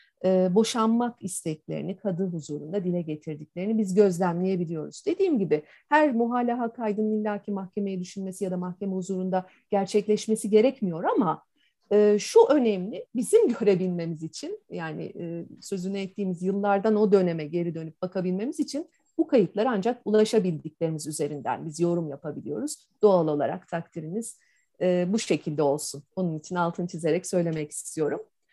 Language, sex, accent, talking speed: Turkish, female, native, 120 wpm